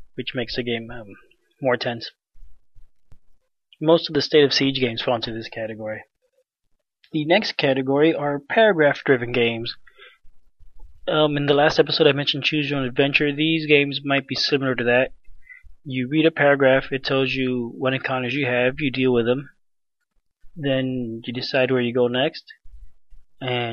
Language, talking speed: English, 165 wpm